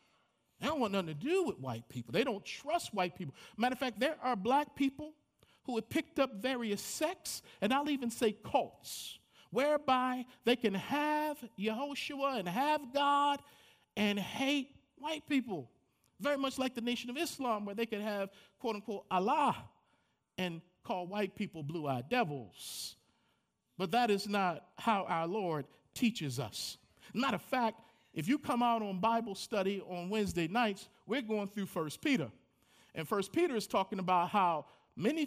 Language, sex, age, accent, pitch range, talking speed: English, male, 50-69, American, 185-265 Hz, 165 wpm